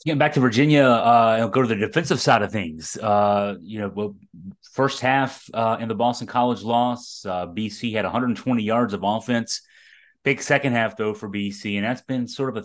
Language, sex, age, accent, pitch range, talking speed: English, male, 30-49, American, 105-125 Hz, 210 wpm